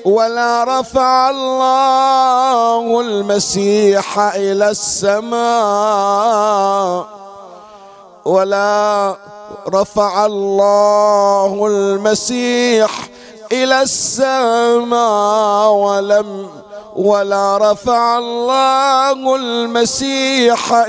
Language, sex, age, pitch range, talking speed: Arabic, male, 50-69, 175-210 Hz, 50 wpm